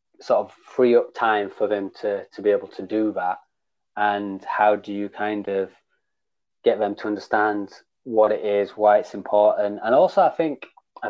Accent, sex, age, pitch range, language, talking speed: British, male, 20-39, 105-115 Hz, English, 190 wpm